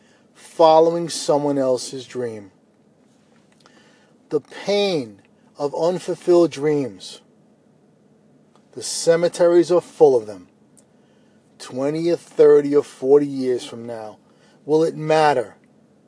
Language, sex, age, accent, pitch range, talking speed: English, male, 40-59, American, 140-200 Hz, 95 wpm